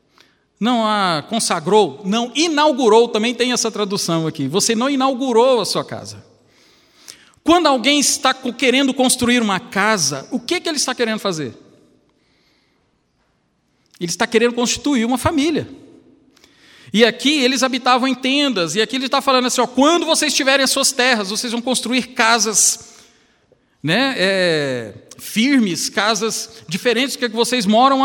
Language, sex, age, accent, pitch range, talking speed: Portuguese, male, 50-69, Brazilian, 215-275 Hz, 140 wpm